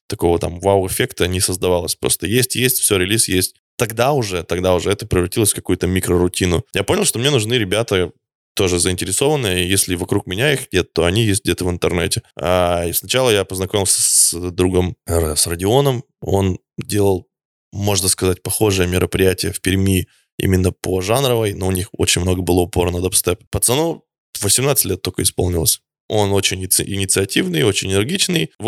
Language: Russian